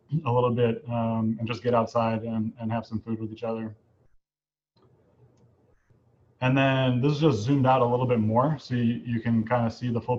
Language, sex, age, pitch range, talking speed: English, male, 20-39, 115-125 Hz, 210 wpm